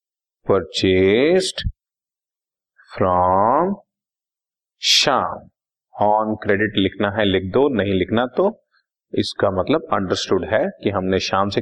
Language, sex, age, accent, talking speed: Hindi, male, 40-59, native, 105 wpm